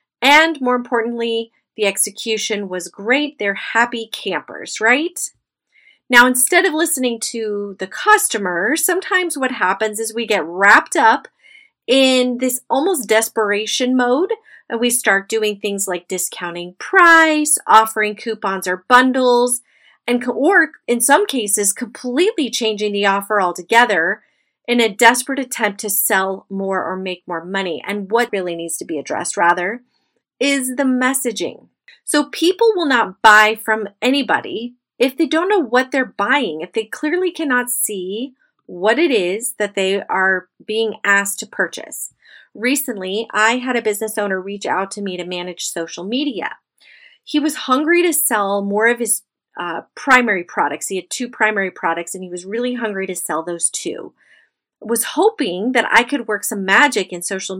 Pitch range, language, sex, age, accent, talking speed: 200-265 Hz, English, female, 30-49, American, 160 wpm